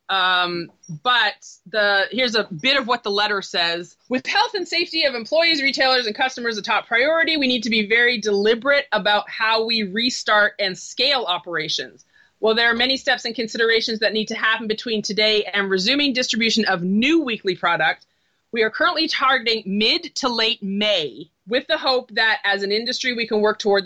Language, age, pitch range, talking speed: English, 30-49, 210-255 Hz, 190 wpm